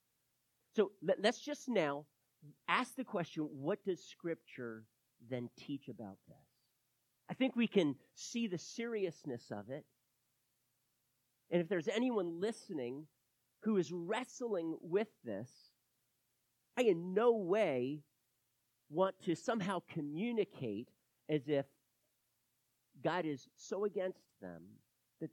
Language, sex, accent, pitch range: English, male, American, 135-200 Hz